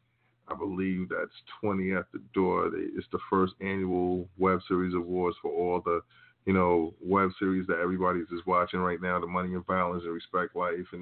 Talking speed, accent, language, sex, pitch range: 190 wpm, American, English, male, 90-105 Hz